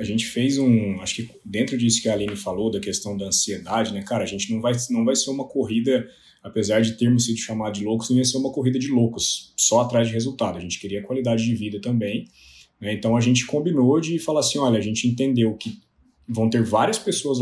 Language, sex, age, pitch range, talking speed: Portuguese, male, 20-39, 110-135 Hz, 235 wpm